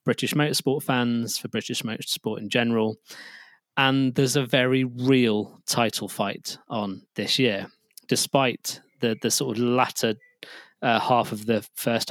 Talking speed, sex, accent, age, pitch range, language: 145 wpm, male, British, 20-39, 110-130 Hz, English